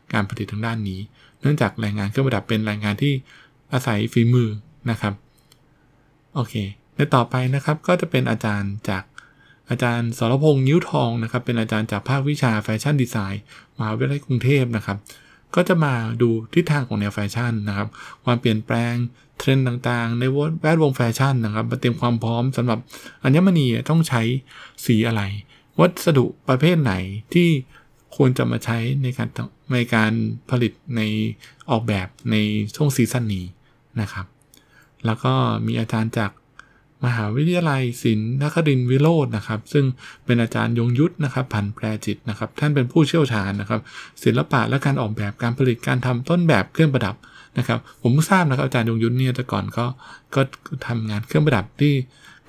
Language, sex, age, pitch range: Thai, male, 20-39, 110-140 Hz